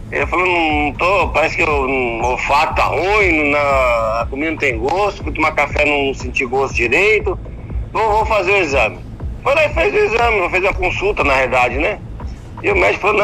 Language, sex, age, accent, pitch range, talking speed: Portuguese, male, 50-69, Brazilian, 130-200 Hz, 205 wpm